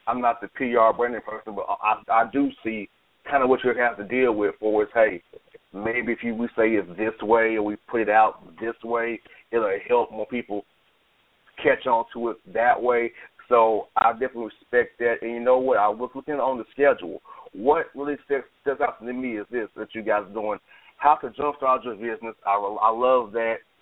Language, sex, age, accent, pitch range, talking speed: English, male, 30-49, American, 115-170 Hz, 220 wpm